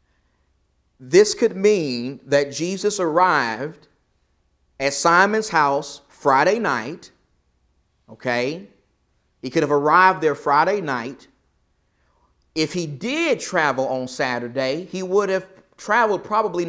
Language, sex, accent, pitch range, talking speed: English, male, American, 130-180 Hz, 110 wpm